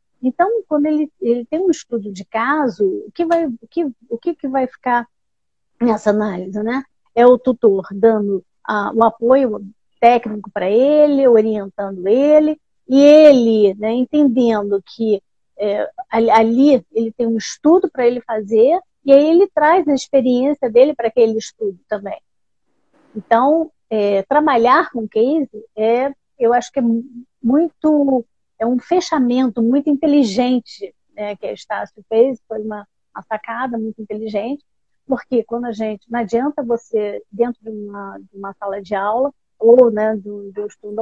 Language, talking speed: Portuguese, 140 wpm